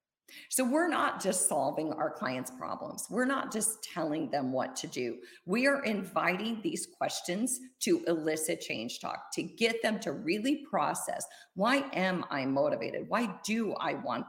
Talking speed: 165 wpm